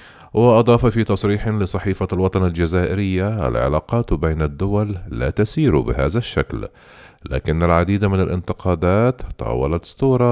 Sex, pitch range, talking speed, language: male, 80-110 Hz, 110 wpm, Arabic